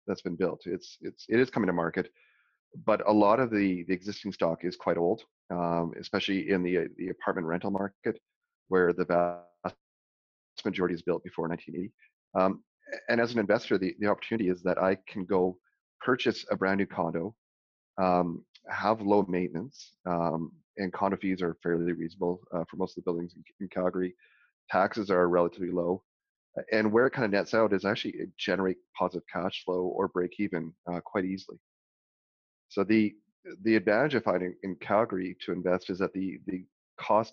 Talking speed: 185 wpm